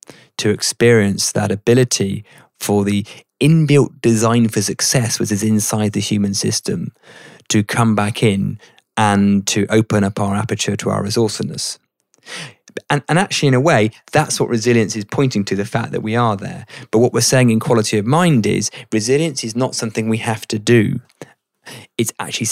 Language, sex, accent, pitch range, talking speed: English, male, British, 105-120 Hz, 175 wpm